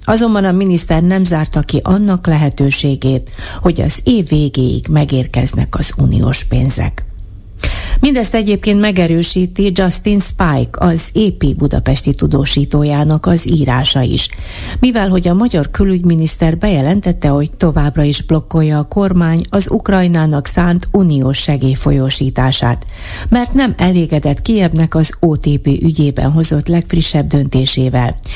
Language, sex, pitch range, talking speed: Hungarian, female, 135-175 Hz, 115 wpm